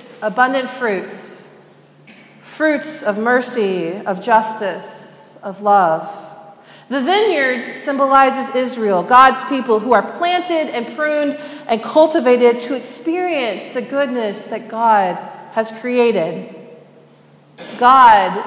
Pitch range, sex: 210-270 Hz, female